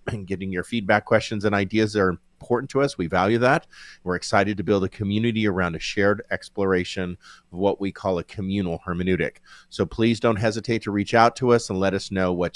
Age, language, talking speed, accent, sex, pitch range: 40-59, English, 220 wpm, American, male, 95-115 Hz